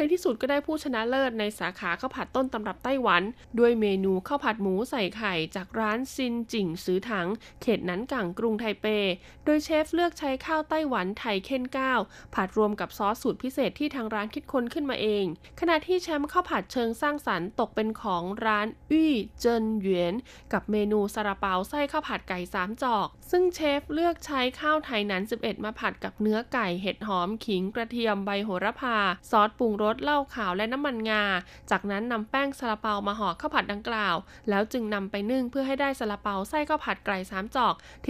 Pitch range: 200-265 Hz